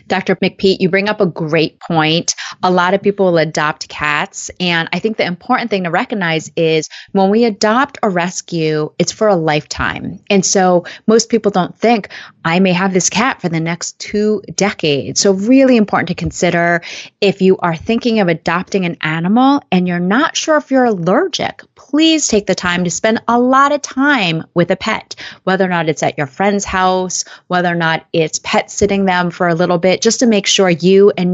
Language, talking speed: English, 205 wpm